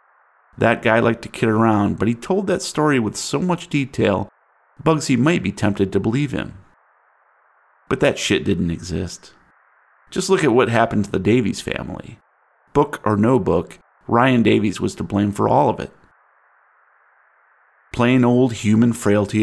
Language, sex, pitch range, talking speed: English, male, 100-125 Hz, 165 wpm